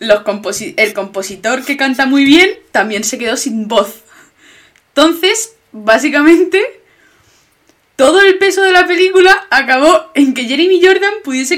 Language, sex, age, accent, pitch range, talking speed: Spanish, female, 20-39, Spanish, 210-340 Hz, 140 wpm